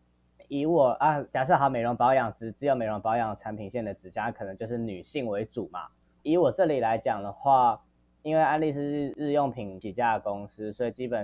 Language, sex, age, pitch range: Chinese, male, 10-29, 100-140 Hz